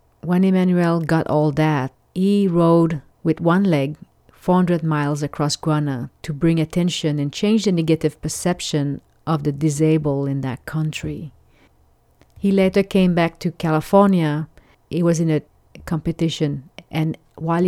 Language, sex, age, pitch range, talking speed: English, female, 40-59, 155-185 Hz, 140 wpm